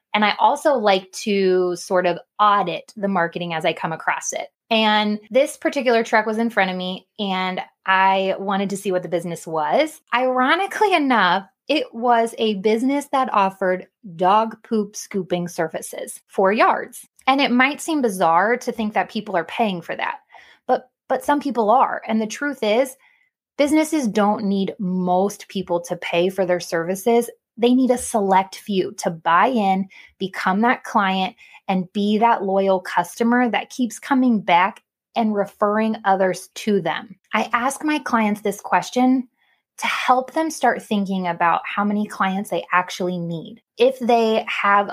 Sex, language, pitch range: female, English, 185-240 Hz